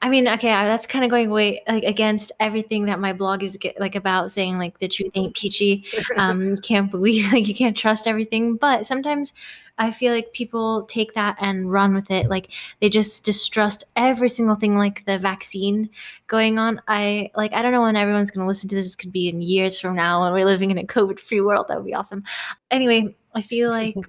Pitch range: 195-230 Hz